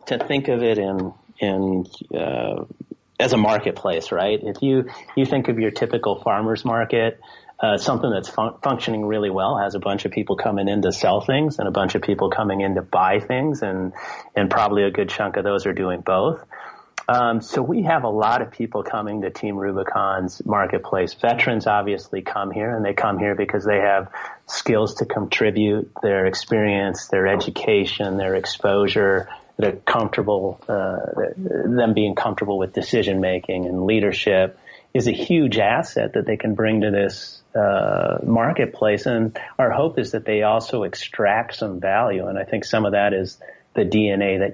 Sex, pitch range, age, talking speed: male, 95-110 Hz, 30-49, 180 wpm